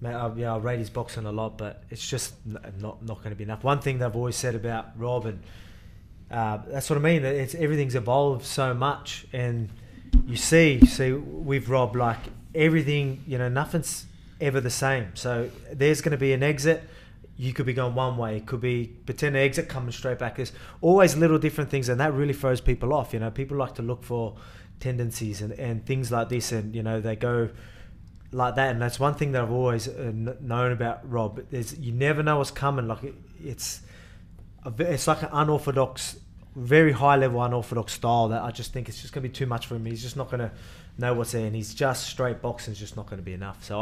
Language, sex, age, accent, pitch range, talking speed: English, male, 20-39, Australian, 110-135 Hz, 220 wpm